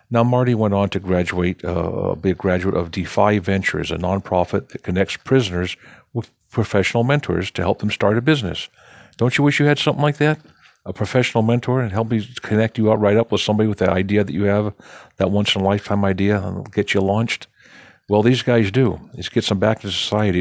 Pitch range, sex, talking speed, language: 95-110 Hz, male, 205 wpm, English